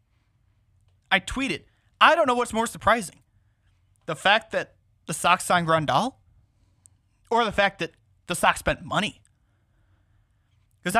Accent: American